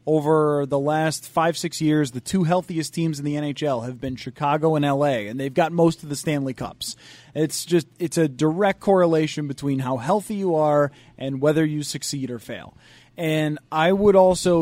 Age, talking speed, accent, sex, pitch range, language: 30-49, 195 wpm, American, male, 140-180 Hz, English